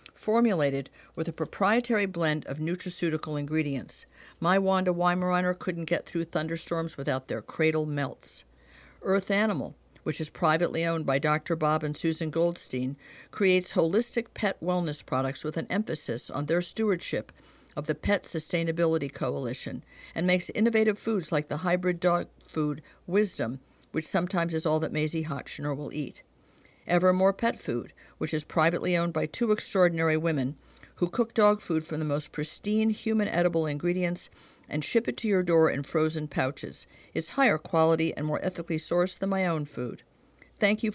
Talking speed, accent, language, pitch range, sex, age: 160 wpm, American, English, 150-185 Hz, female, 60-79